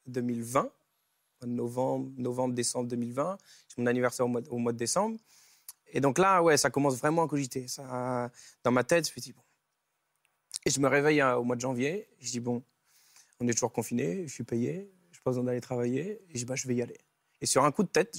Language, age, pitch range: French, 20-39, 125-150 Hz